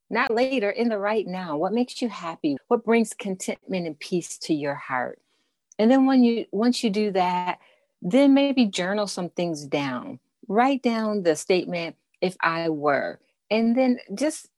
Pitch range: 155-240 Hz